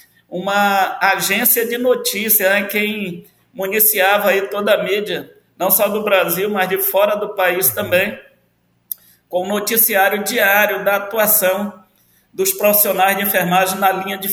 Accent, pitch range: Brazilian, 180-205 Hz